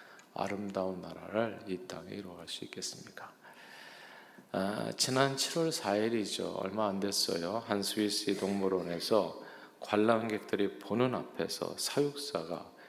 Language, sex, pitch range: Korean, male, 95-125 Hz